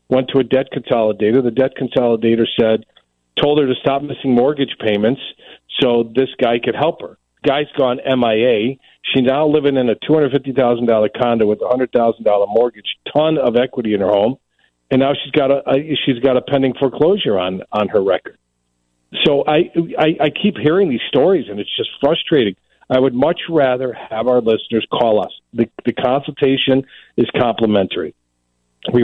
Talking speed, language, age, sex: 185 wpm, English, 40-59, male